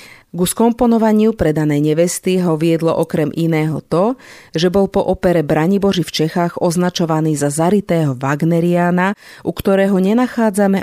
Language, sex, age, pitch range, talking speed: Slovak, female, 40-59, 150-200 Hz, 125 wpm